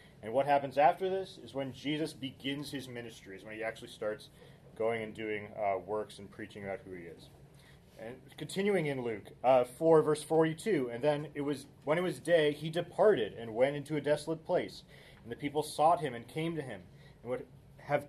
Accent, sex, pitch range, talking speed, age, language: American, male, 120-155 Hz, 210 wpm, 30-49, English